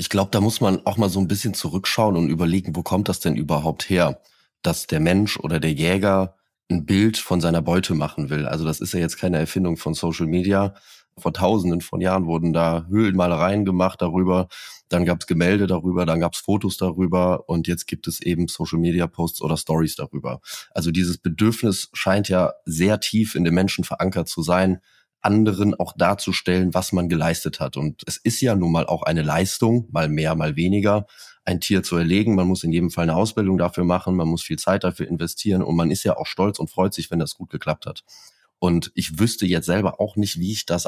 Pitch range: 85-100 Hz